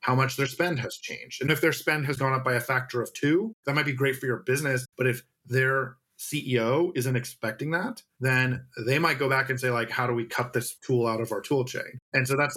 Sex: male